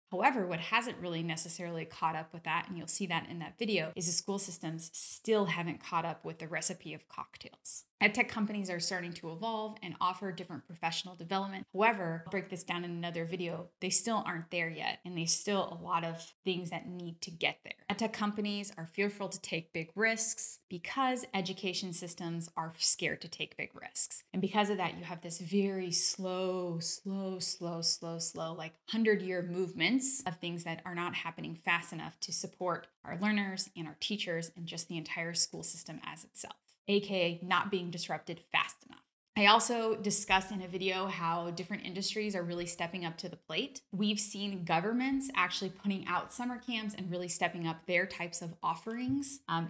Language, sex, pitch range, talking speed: English, female, 170-200 Hz, 195 wpm